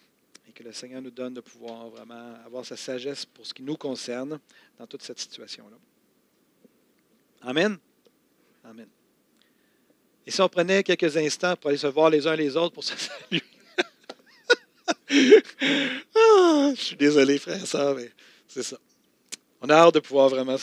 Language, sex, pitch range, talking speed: French, male, 125-165 Hz, 165 wpm